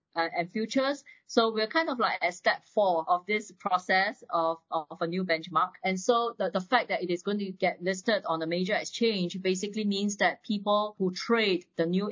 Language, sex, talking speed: English, female, 210 wpm